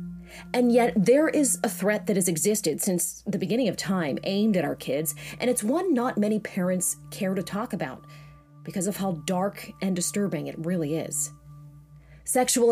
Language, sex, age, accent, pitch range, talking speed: English, female, 30-49, American, 160-215 Hz, 180 wpm